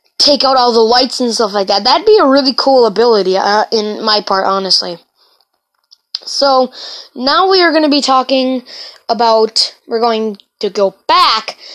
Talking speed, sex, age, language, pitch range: 170 wpm, female, 20-39, English, 220-275 Hz